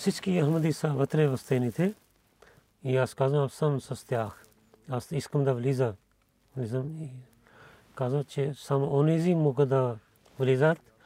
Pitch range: 120-145 Hz